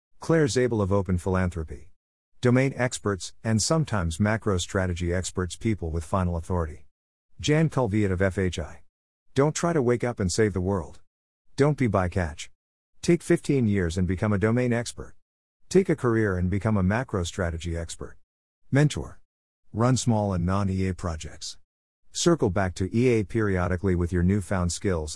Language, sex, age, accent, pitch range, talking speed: English, male, 50-69, American, 85-110 Hz, 155 wpm